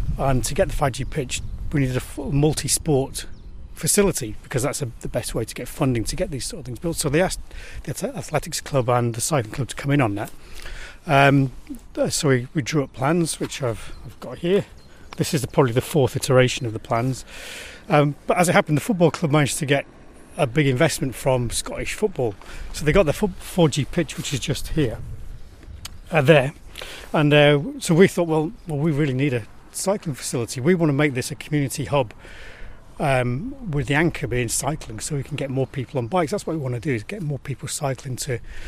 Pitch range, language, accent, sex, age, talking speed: 125-155 Hz, English, British, male, 40-59, 215 wpm